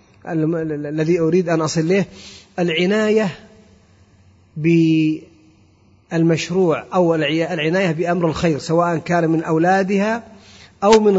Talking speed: 90 wpm